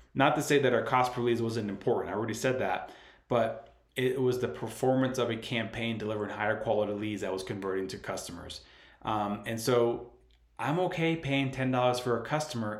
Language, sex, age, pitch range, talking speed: English, male, 30-49, 110-135 Hz, 190 wpm